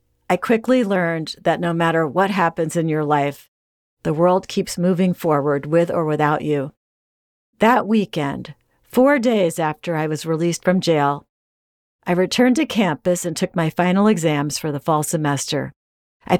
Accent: American